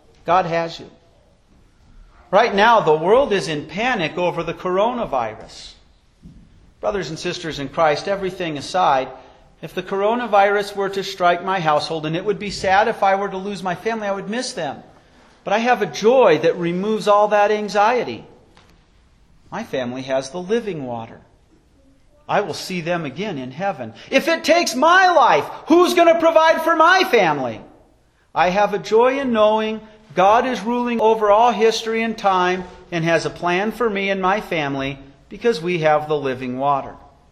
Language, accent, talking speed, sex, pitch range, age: English, American, 175 wpm, male, 180-275 Hz, 40-59